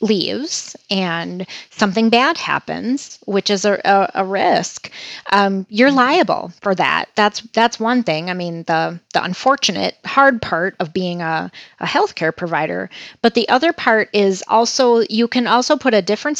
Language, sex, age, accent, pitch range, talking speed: English, female, 30-49, American, 180-245 Hz, 165 wpm